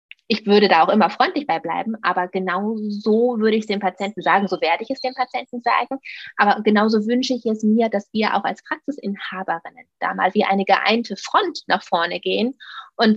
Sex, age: female, 20-39